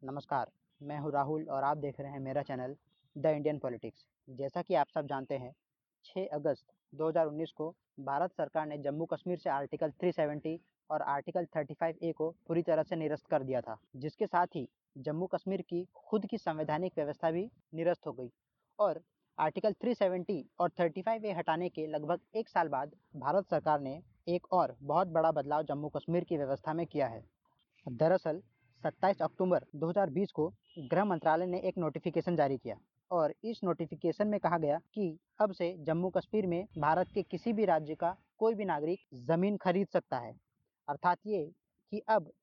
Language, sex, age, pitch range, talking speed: Hindi, male, 20-39, 150-185 Hz, 180 wpm